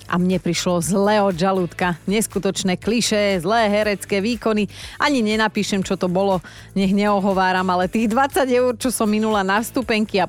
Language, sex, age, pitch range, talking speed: Slovak, female, 30-49, 190-250 Hz, 165 wpm